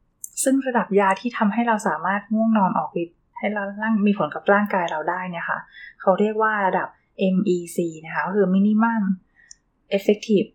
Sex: female